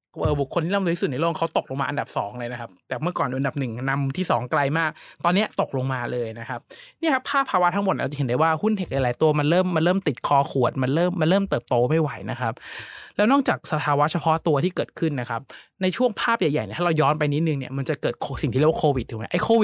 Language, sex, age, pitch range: Thai, male, 20-39, 135-185 Hz